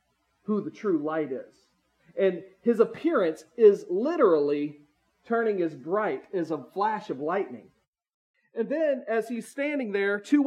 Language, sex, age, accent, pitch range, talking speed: English, male, 40-59, American, 175-230 Hz, 145 wpm